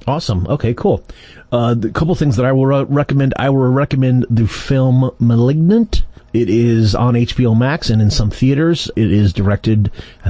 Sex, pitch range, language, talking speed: male, 115-140 Hz, English, 180 wpm